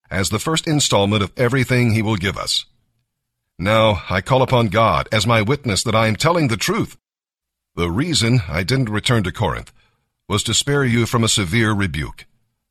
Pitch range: 110-130 Hz